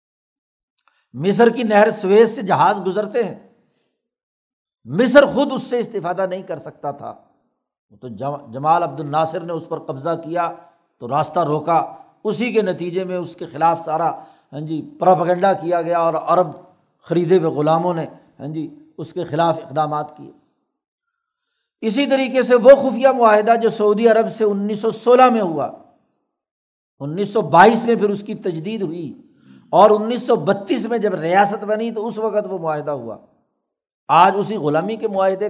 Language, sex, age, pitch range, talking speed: Urdu, male, 60-79, 160-215 Hz, 165 wpm